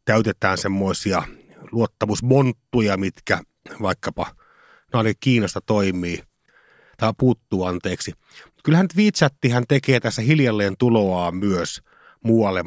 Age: 30-49